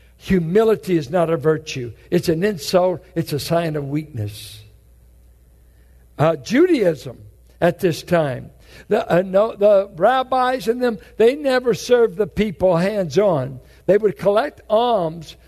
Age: 60-79